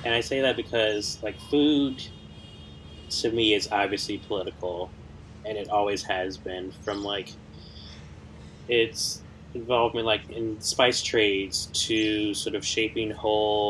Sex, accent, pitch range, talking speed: male, American, 95-105 Hz, 130 wpm